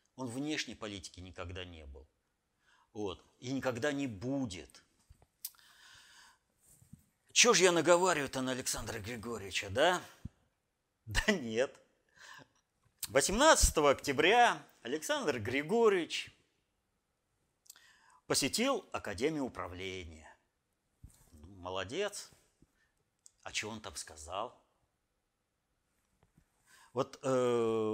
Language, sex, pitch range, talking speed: Russian, male, 100-140 Hz, 75 wpm